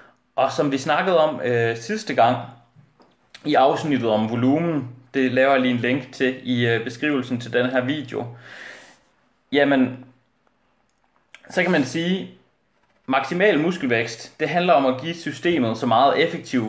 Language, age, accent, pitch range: Danish, 30-49, native, 120-140 Hz